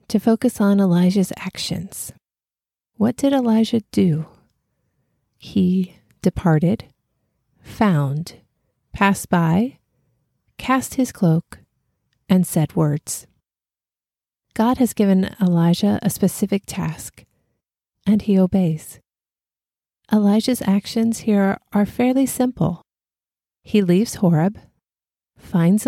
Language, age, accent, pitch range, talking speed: English, 30-49, American, 165-215 Hz, 95 wpm